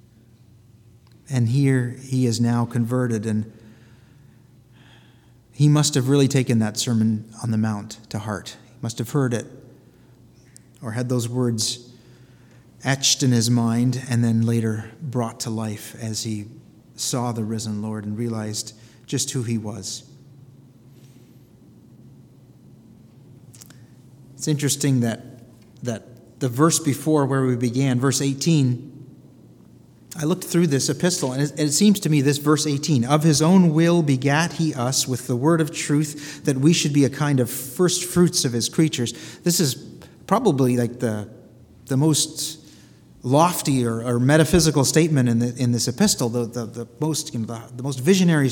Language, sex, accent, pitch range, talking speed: English, male, American, 115-145 Hz, 155 wpm